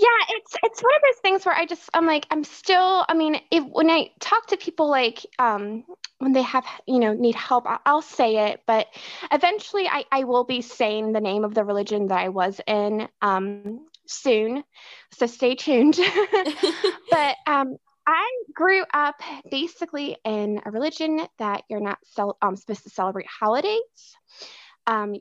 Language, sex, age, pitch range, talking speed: English, female, 20-39, 210-310 Hz, 180 wpm